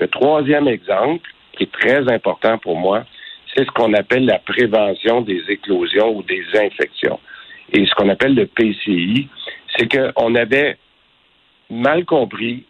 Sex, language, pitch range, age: male, French, 105-135 Hz, 60-79